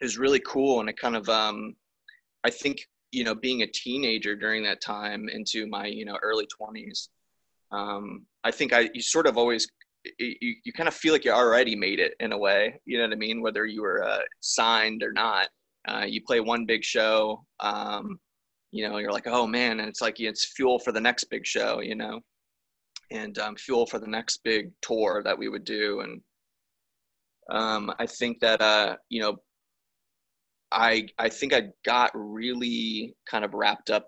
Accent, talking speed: American, 195 wpm